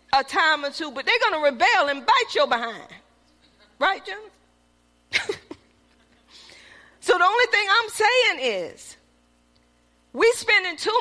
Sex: female